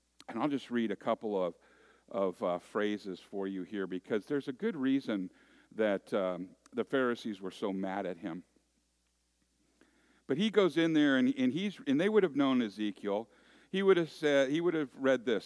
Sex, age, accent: male, 50-69, American